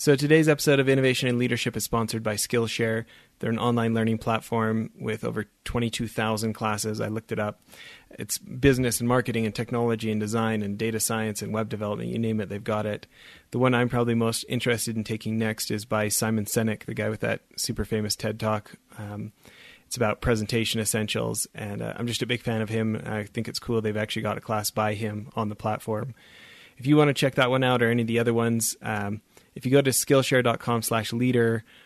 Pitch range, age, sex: 110-120 Hz, 30-49, male